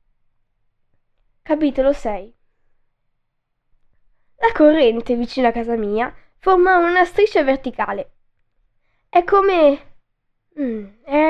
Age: 10-29